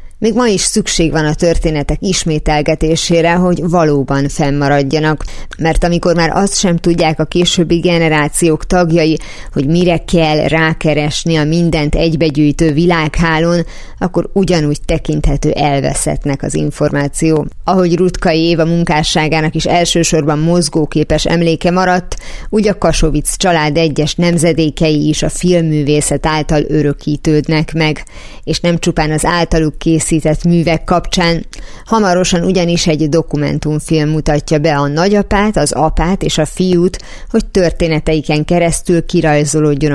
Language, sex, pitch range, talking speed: Hungarian, female, 150-175 Hz, 120 wpm